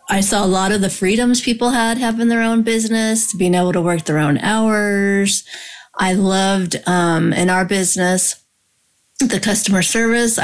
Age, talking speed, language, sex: 30-49, 165 wpm, English, female